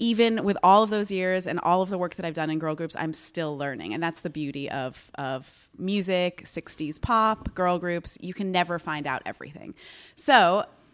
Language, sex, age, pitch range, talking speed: English, female, 30-49, 155-200 Hz, 210 wpm